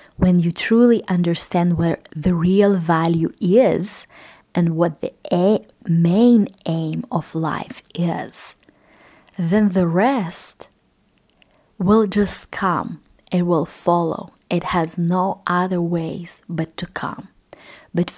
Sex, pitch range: female, 170-205 Hz